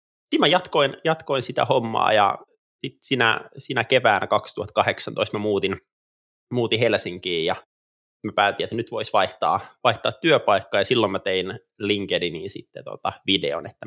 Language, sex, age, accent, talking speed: Finnish, male, 20-39, native, 145 wpm